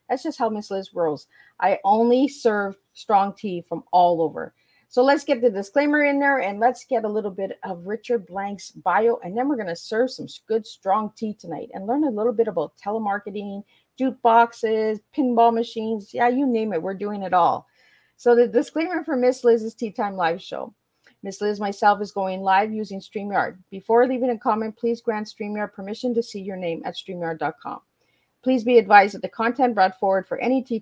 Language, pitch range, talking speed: English, 190-235 Hz, 200 wpm